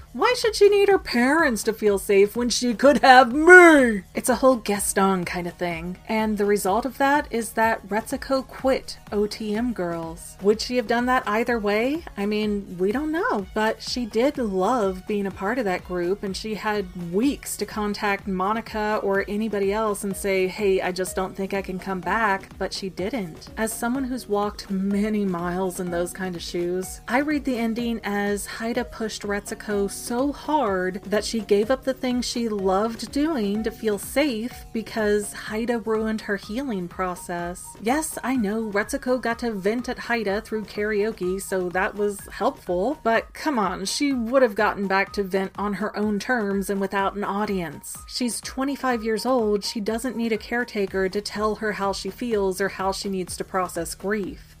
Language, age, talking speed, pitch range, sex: English, 30-49, 190 wpm, 195-240 Hz, female